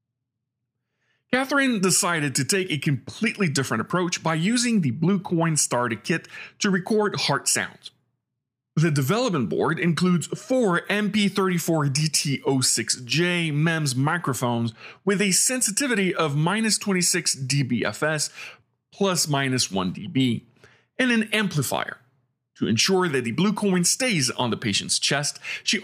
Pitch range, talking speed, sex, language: 125-180 Hz, 120 wpm, male, English